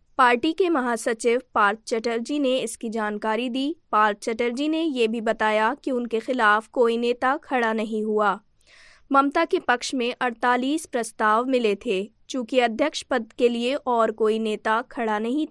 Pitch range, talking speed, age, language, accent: 225-280 Hz, 160 wpm, 20-39, Hindi, native